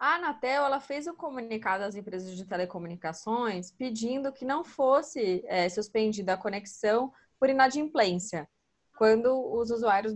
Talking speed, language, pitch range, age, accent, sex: 135 wpm, Portuguese, 205-280 Hz, 20-39, Brazilian, female